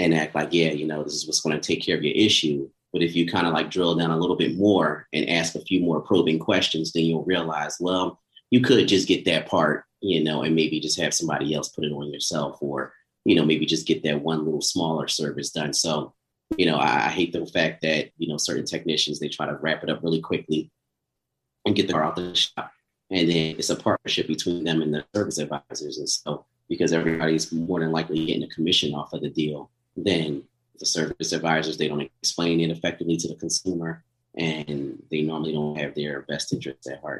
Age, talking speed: 30-49, 235 wpm